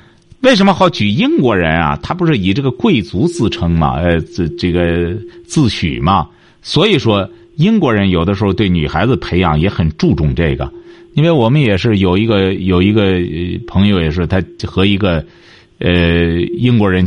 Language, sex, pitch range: Chinese, male, 85-120 Hz